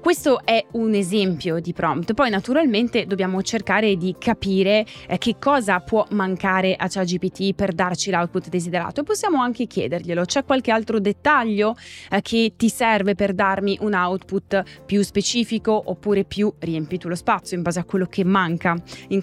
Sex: female